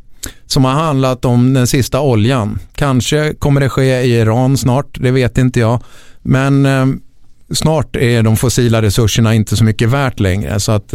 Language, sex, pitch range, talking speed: Swedish, male, 100-125 Hz, 175 wpm